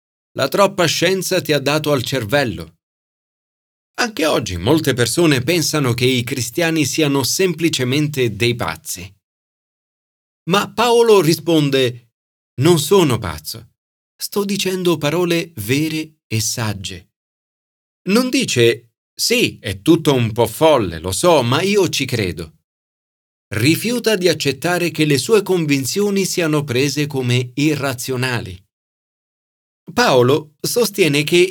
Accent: native